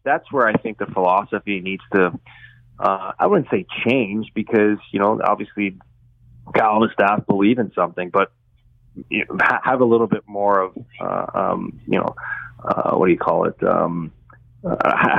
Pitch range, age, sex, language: 95-120 Hz, 30-49, male, English